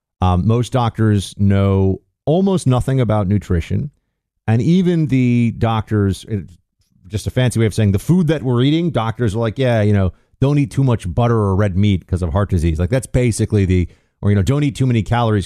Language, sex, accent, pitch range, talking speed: English, male, American, 95-120 Hz, 205 wpm